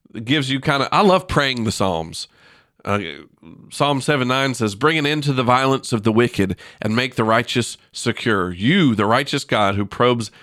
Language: English